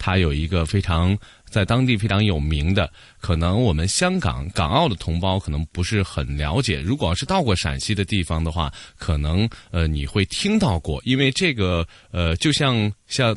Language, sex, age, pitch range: Chinese, male, 20-39, 85-125 Hz